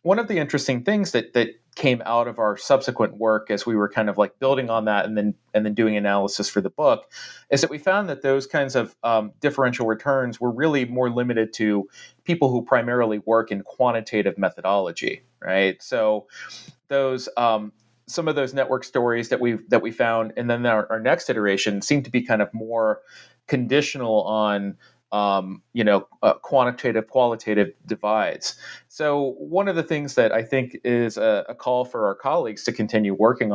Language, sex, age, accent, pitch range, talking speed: English, male, 30-49, American, 105-130 Hz, 190 wpm